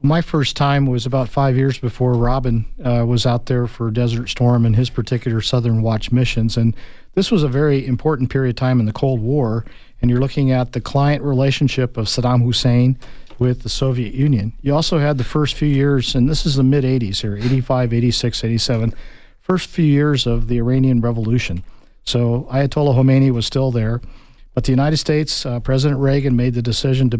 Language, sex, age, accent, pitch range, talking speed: English, male, 50-69, American, 120-135 Hz, 195 wpm